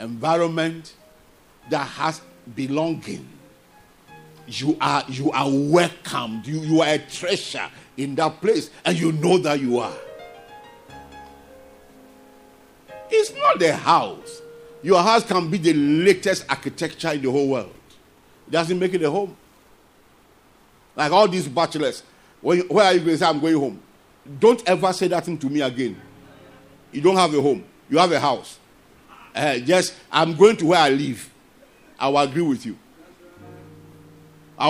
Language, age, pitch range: English, 50-69, 135-185 Hz